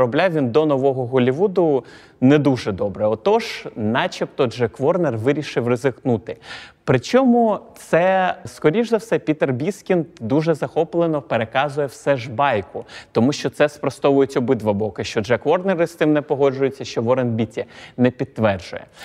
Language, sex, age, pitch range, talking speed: Ukrainian, male, 30-49, 120-160 Hz, 140 wpm